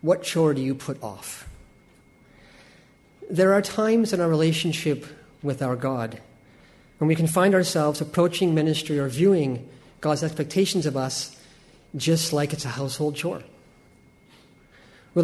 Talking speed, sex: 140 wpm, male